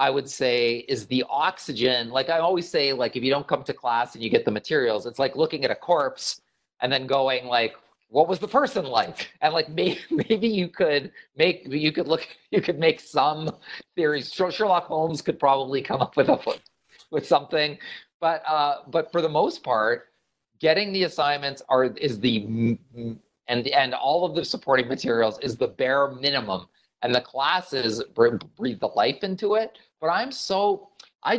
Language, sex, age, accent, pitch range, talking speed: English, male, 40-59, American, 125-170 Hz, 190 wpm